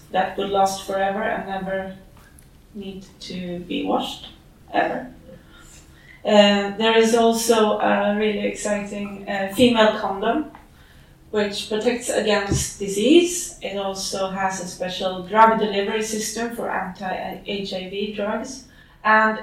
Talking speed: 115 wpm